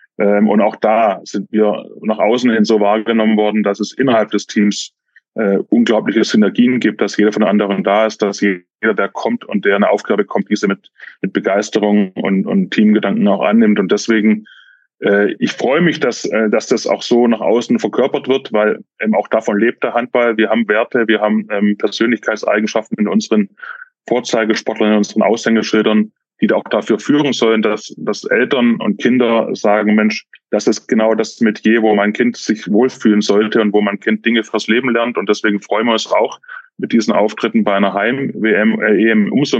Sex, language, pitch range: male, German, 105-115 Hz